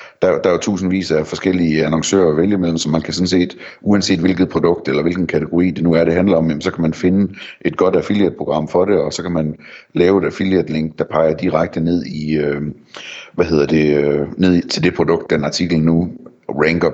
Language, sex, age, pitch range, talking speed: Danish, male, 60-79, 80-90 Hz, 215 wpm